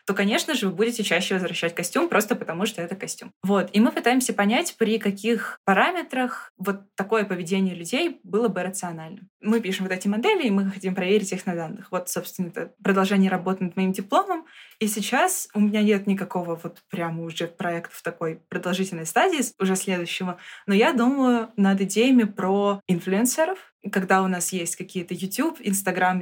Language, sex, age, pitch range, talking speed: Russian, female, 20-39, 185-225 Hz, 180 wpm